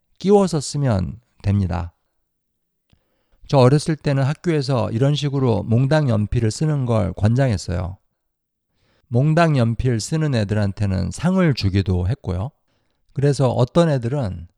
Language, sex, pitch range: Korean, male, 100-140 Hz